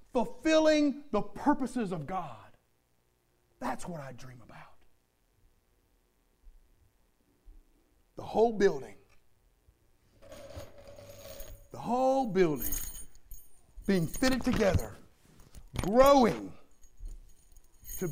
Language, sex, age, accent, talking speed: English, male, 50-69, American, 70 wpm